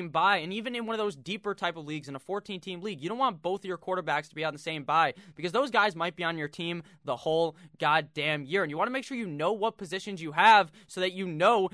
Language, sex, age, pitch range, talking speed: English, male, 20-39, 145-185 Hz, 285 wpm